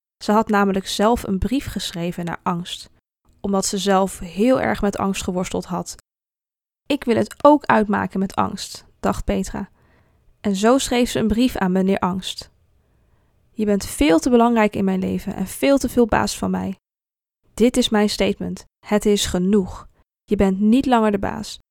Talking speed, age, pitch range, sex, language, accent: 175 wpm, 20-39, 195-230 Hz, female, Dutch, Dutch